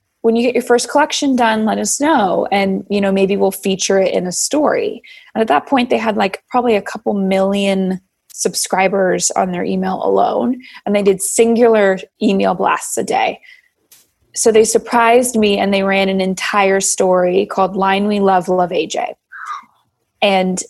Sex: female